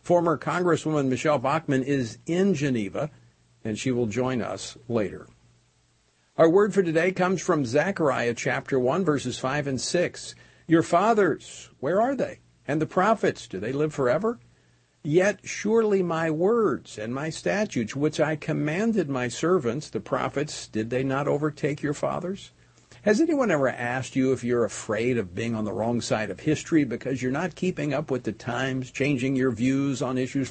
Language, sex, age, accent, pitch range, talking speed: English, male, 50-69, American, 120-170 Hz, 170 wpm